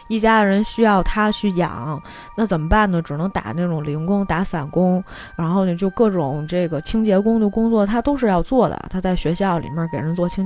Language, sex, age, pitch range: Chinese, female, 20-39, 175-225 Hz